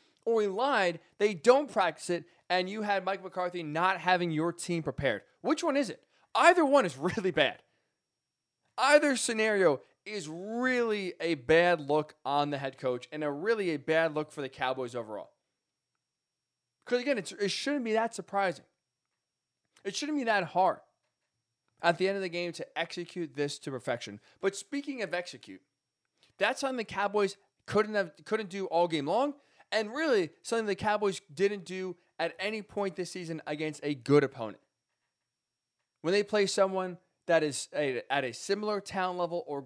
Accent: American